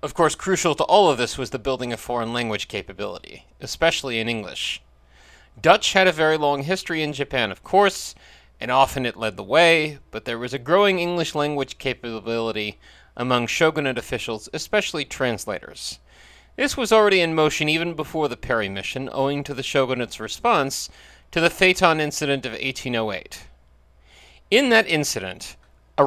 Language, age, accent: English, 30-49, American